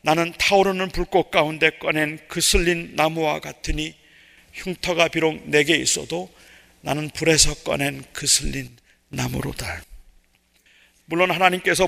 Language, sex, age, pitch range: Korean, male, 40-59, 165-195 Hz